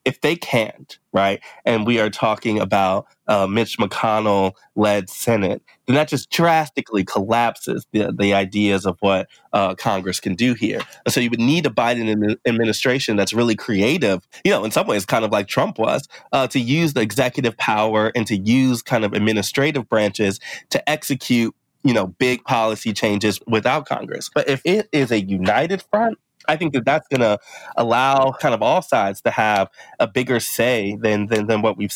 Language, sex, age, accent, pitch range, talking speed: English, male, 20-39, American, 105-130 Hz, 185 wpm